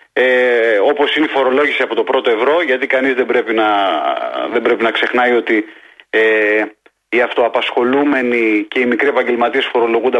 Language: Greek